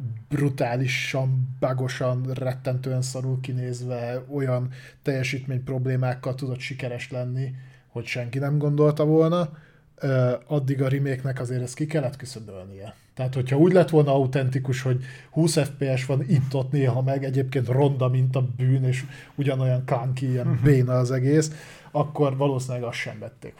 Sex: male